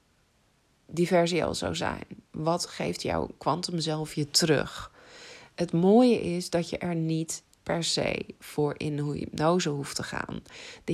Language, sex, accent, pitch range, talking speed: Dutch, female, Dutch, 150-185 Hz, 150 wpm